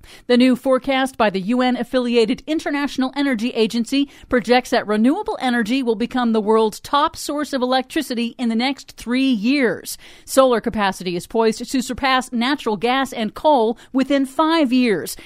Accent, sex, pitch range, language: American, female, 225-275 Hz, English